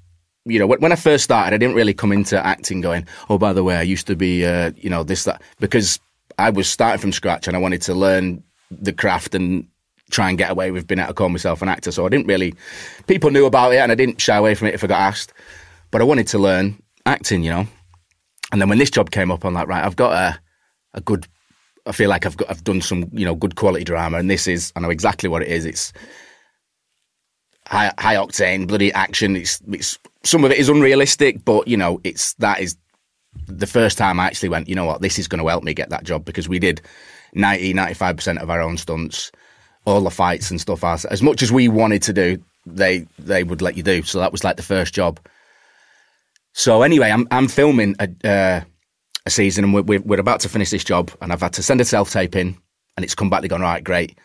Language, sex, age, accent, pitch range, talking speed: English, male, 30-49, British, 90-105 Hz, 250 wpm